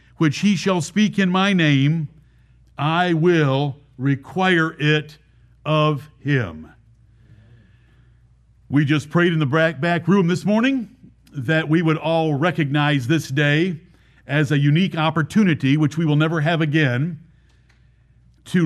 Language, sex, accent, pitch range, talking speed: English, male, American, 135-175 Hz, 130 wpm